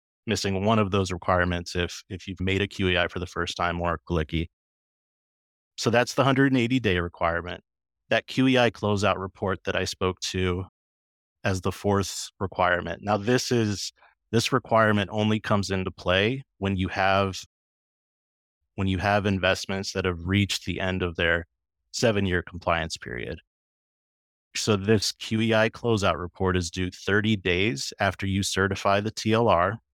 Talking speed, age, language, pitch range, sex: 150 wpm, 30-49, English, 90-105 Hz, male